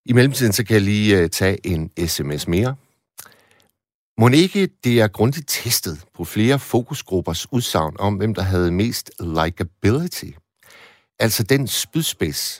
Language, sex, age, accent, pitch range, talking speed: Danish, male, 60-79, native, 90-120 Hz, 140 wpm